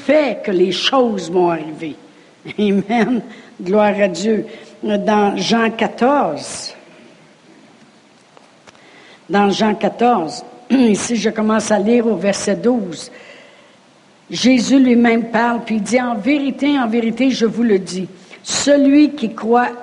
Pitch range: 200-255 Hz